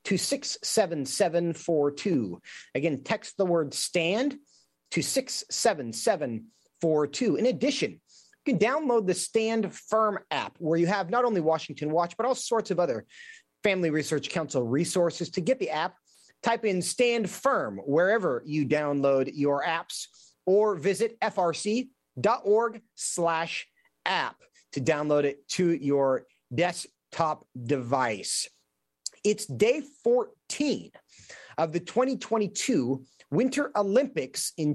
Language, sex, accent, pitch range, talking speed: English, male, American, 160-235 Hz, 115 wpm